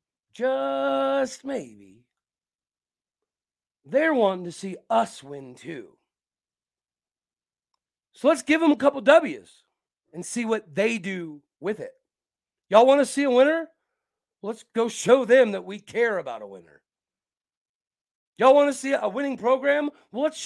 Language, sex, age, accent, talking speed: English, male, 40-59, American, 140 wpm